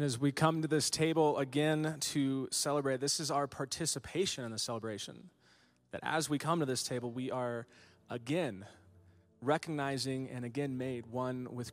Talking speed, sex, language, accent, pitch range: 165 wpm, male, English, American, 125-155 Hz